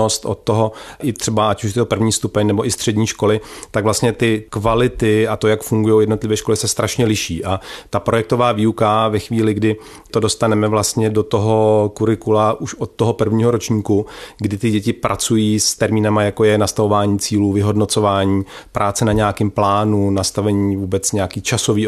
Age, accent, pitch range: 40-59, native, 105-115 Hz